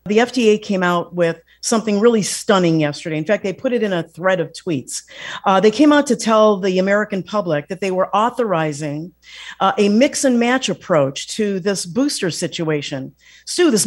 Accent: American